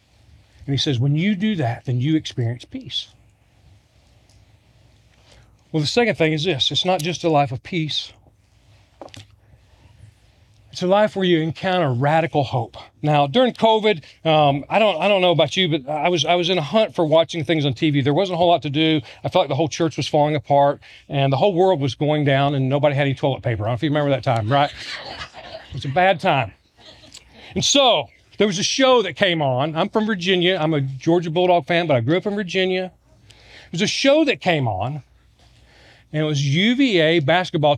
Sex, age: male, 40-59